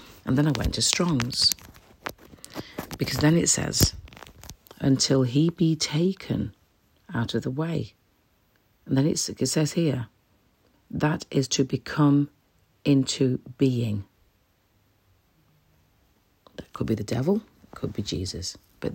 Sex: female